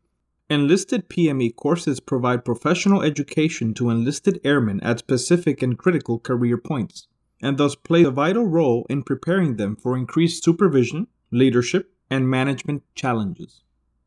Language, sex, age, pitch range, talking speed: English, male, 30-49, 120-170 Hz, 130 wpm